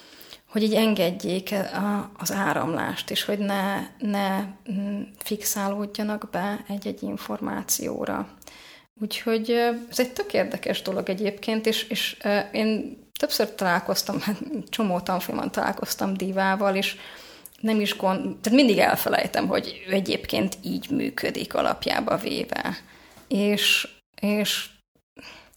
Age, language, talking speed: 30-49, Hungarian, 105 wpm